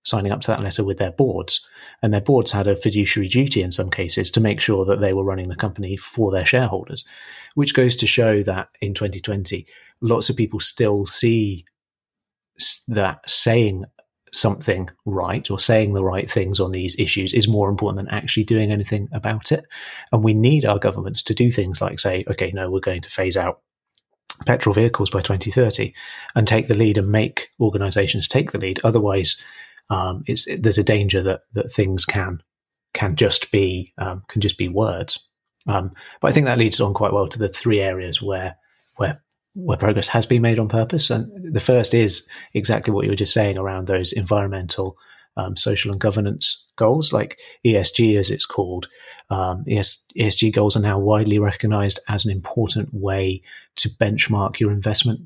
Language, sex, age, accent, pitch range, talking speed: English, male, 30-49, British, 95-115 Hz, 190 wpm